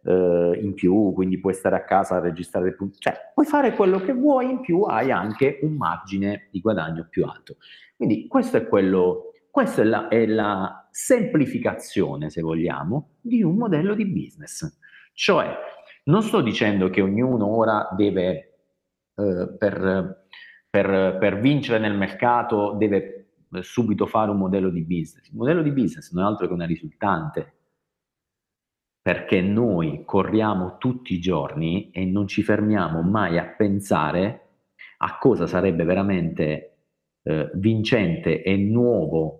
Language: Italian